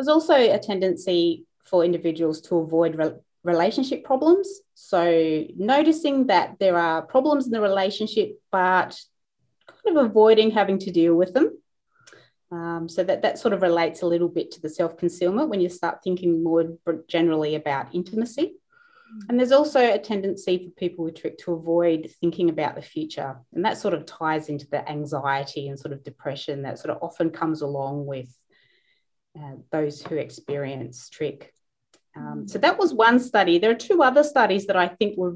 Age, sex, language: 30-49, female, English